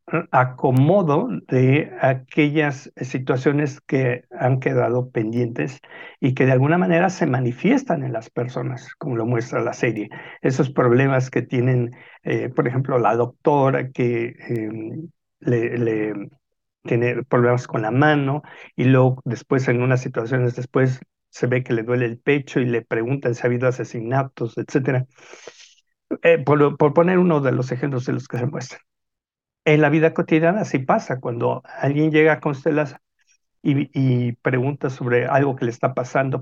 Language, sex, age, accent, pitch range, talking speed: Spanish, male, 60-79, Mexican, 120-155 Hz, 160 wpm